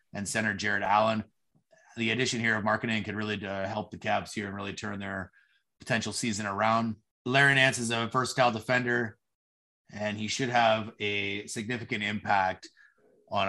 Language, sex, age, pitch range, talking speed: English, male, 30-49, 95-120 Hz, 160 wpm